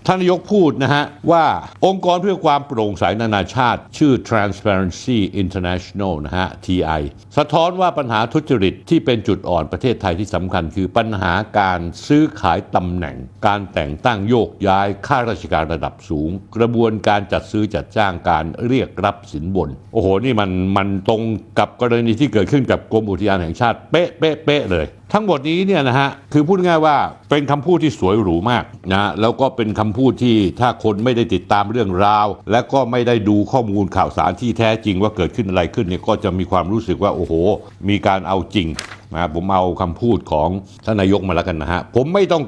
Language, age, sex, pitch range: Thai, 60-79, male, 95-130 Hz